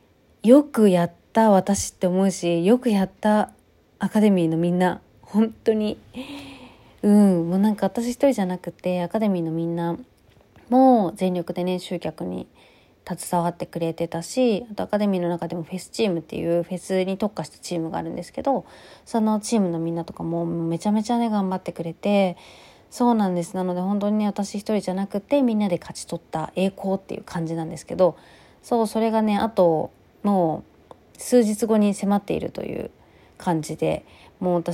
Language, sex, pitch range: Japanese, female, 170-215 Hz